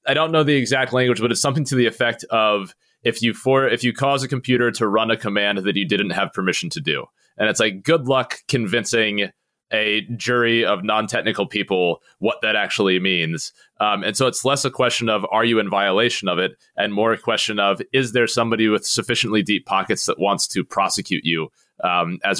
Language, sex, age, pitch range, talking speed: English, male, 30-49, 105-140 Hz, 215 wpm